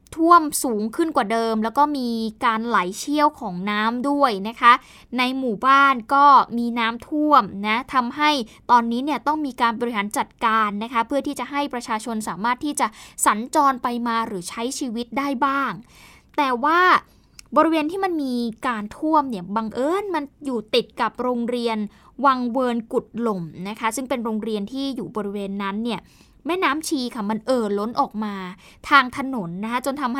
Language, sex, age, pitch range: Thai, female, 20-39, 220-280 Hz